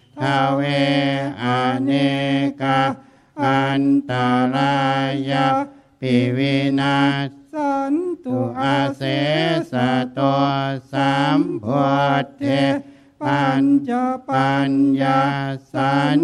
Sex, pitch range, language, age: male, 135-140 Hz, Thai, 60-79